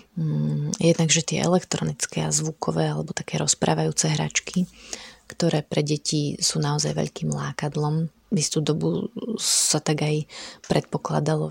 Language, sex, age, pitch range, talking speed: Slovak, female, 30-49, 145-160 Hz, 125 wpm